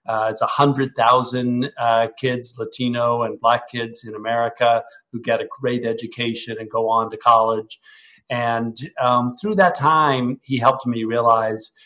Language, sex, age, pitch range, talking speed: English, male, 50-69, 115-130 Hz, 145 wpm